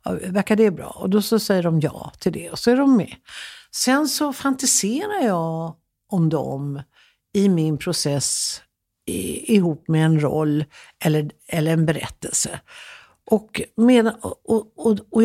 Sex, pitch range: female, 160-220 Hz